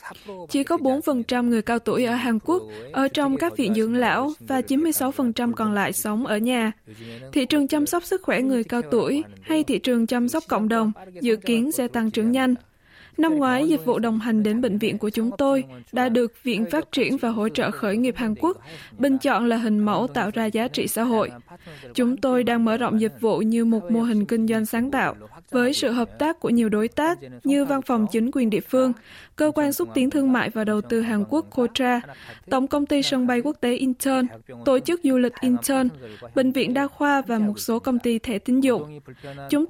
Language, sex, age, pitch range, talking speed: Vietnamese, female, 20-39, 220-265 Hz, 220 wpm